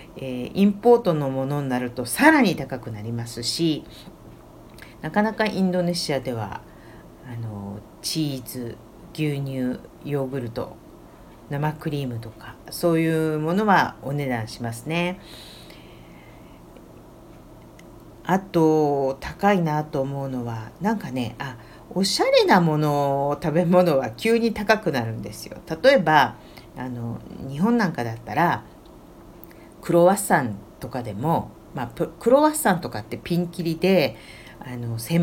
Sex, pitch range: female, 125-180 Hz